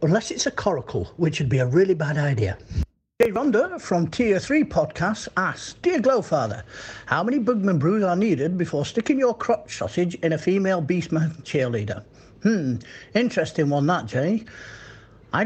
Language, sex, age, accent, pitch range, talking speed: English, male, 50-69, British, 130-195 Hz, 165 wpm